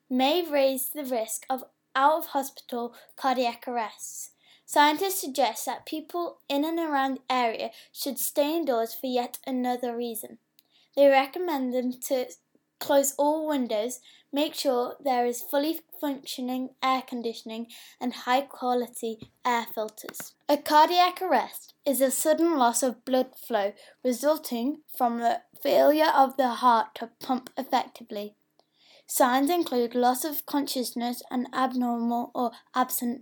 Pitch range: 245-290 Hz